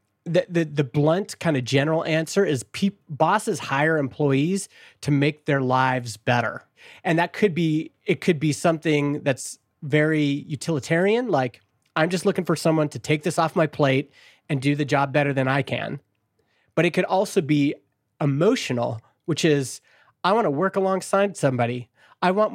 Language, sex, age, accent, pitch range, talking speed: English, male, 30-49, American, 135-185 Hz, 170 wpm